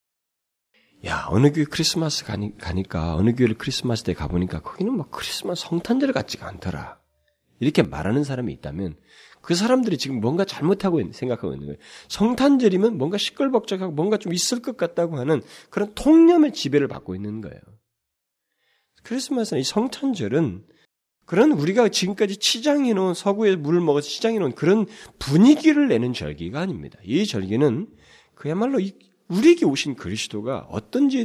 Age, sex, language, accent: 40-59, male, Korean, native